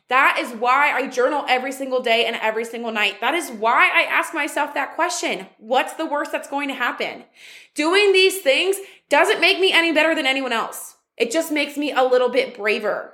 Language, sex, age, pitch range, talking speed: English, female, 20-39, 245-360 Hz, 210 wpm